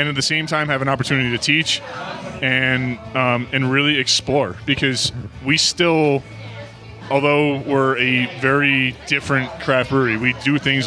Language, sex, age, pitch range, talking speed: English, male, 20-39, 125-145 Hz, 155 wpm